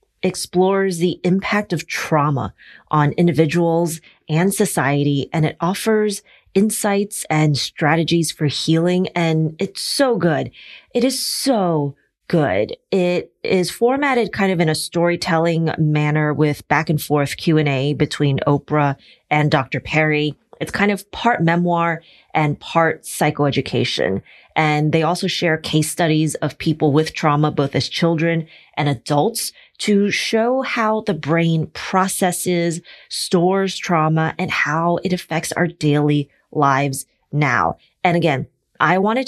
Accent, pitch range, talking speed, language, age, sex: American, 150-190 Hz, 135 wpm, English, 30-49, female